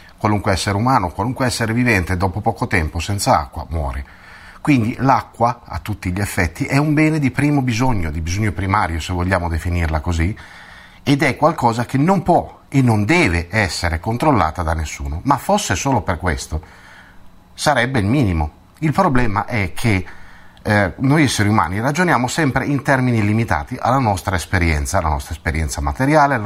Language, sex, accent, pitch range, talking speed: Italian, male, native, 85-120 Hz, 165 wpm